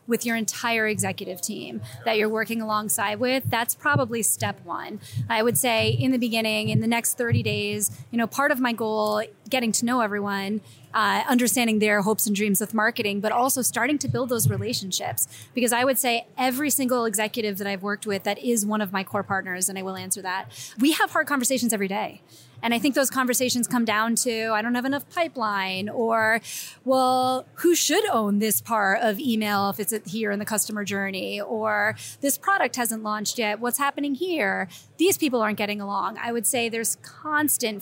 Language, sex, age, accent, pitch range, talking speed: English, female, 20-39, American, 205-245 Hz, 205 wpm